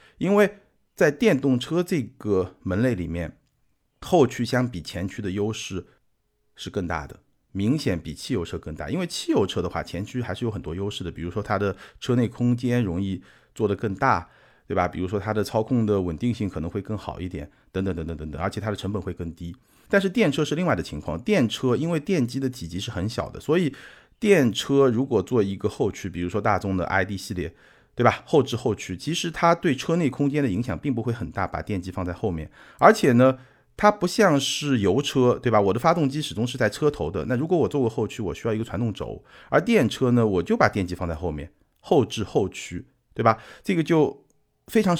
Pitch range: 90-130 Hz